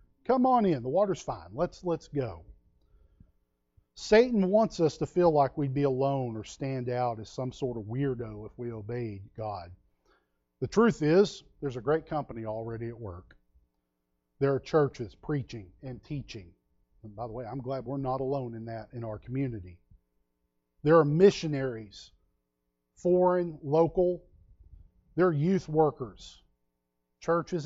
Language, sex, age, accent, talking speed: English, male, 40-59, American, 150 wpm